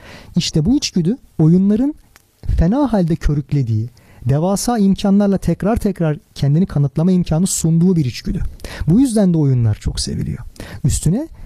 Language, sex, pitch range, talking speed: Turkish, male, 130-205 Hz, 125 wpm